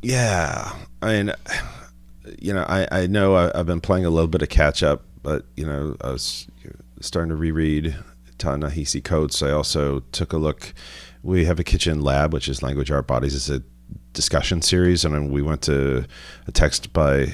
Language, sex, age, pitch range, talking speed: English, male, 40-59, 65-85 Hz, 195 wpm